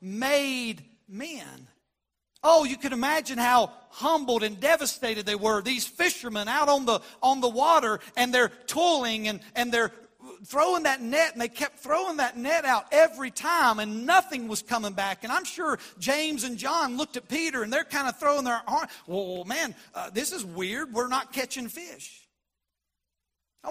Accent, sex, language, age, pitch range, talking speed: American, male, English, 40-59, 175-270 Hz, 180 wpm